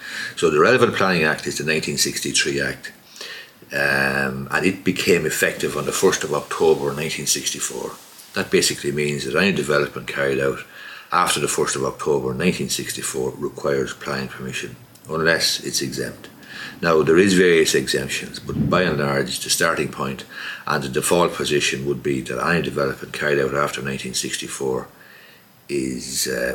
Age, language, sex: 60-79, English, male